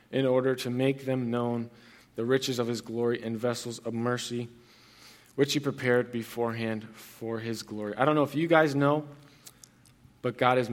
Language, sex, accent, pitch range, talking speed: English, male, American, 115-135 Hz, 180 wpm